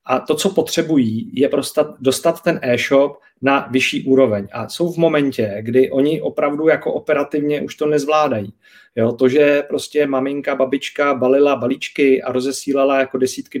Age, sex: 40-59, male